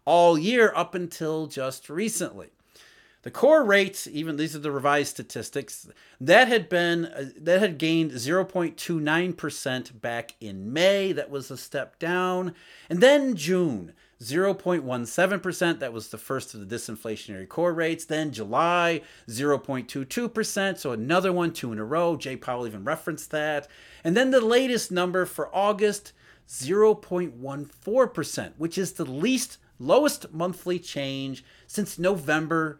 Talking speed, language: 165 wpm, English